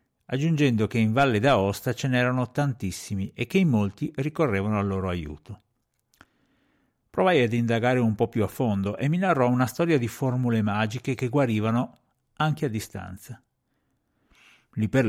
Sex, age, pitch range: male, 50-69, 100-130 Hz